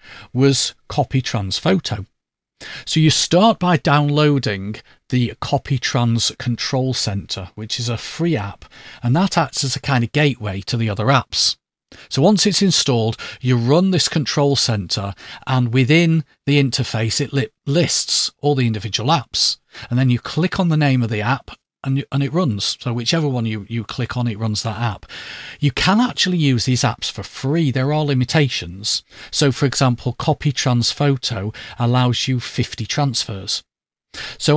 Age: 40-59